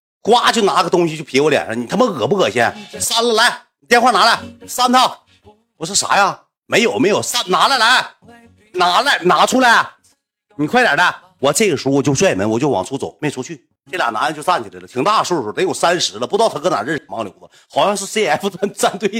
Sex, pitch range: male, 135-215 Hz